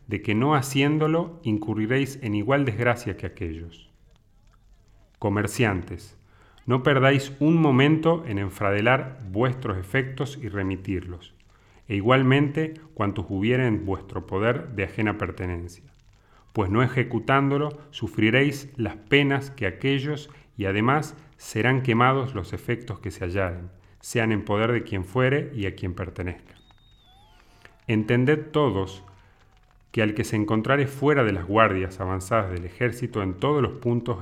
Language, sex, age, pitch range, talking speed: English, male, 40-59, 100-130 Hz, 130 wpm